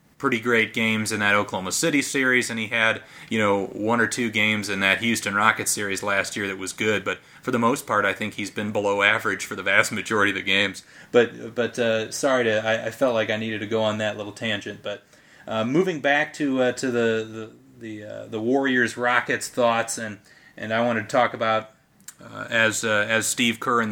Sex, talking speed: male, 225 wpm